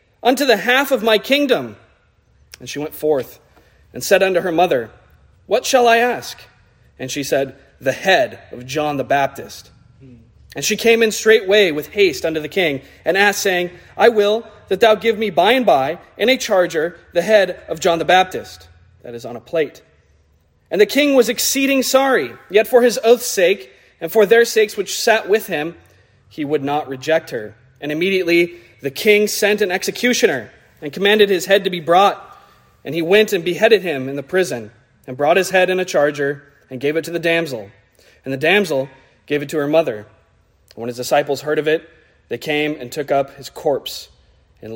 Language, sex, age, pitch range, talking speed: English, male, 30-49, 125-195 Hz, 195 wpm